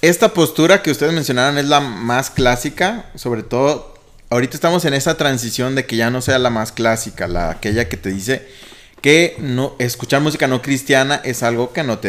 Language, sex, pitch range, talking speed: Spanish, male, 105-145 Hz, 200 wpm